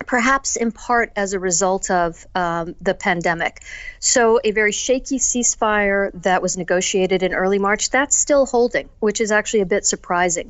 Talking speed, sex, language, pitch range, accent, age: 170 wpm, female, English, 190-235 Hz, American, 50-69